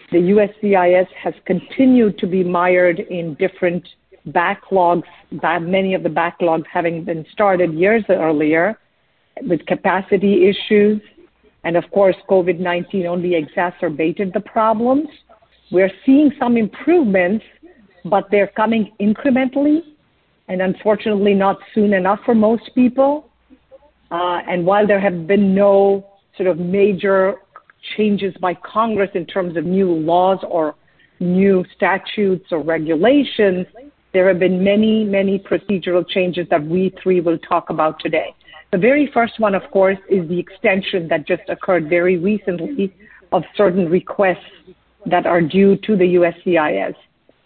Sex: female